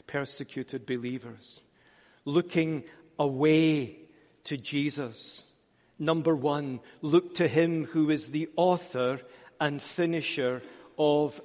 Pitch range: 145-180 Hz